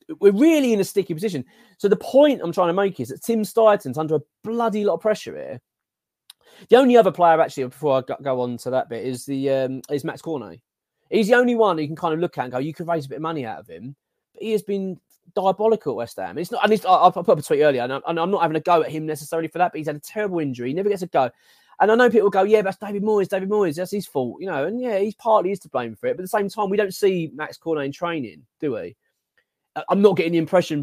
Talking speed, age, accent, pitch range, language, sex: 290 wpm, 20-39, British, 135-195 Hz, English, male